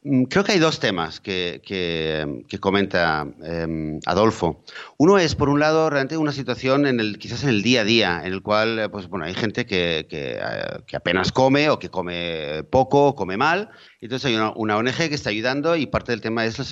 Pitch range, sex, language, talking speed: 100-135 Hz, male, Spanish, 225 wpm